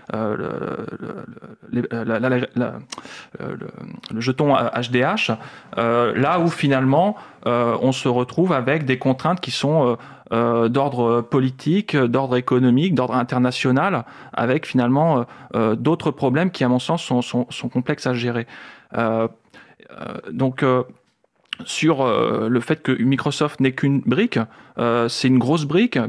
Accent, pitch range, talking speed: French, 120-140 Hz, 130 wpm